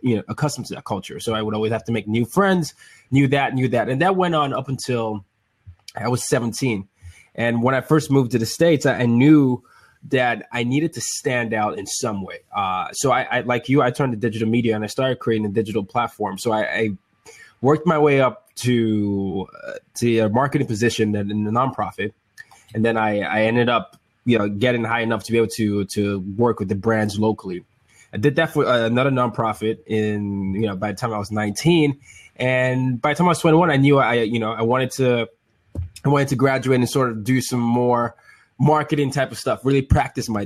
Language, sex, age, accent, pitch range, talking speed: English, male, 20-39, American, 110-130 Hz, 220 wpm